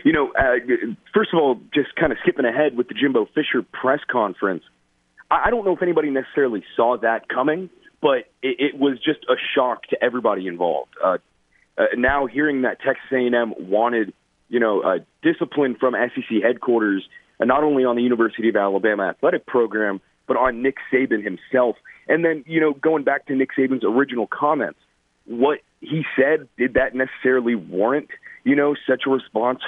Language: English